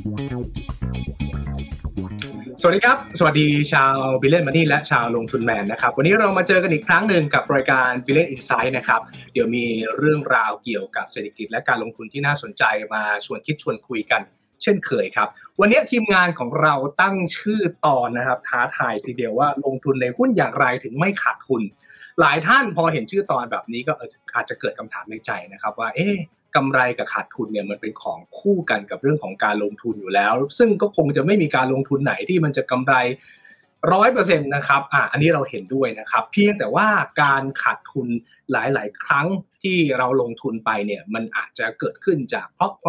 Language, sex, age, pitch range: Thai, male, 20-39, 125-180 Hz